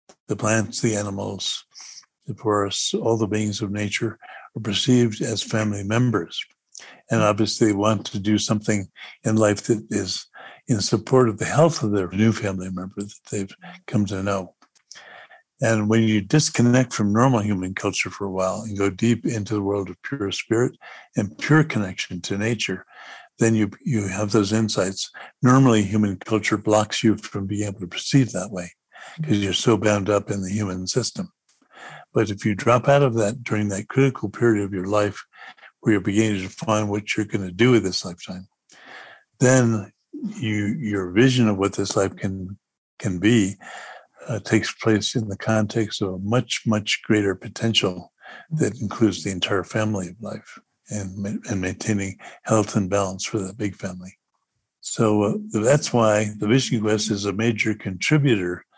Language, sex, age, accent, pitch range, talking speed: English, male, 60-79, American, 100-115 Hz, 175 wpm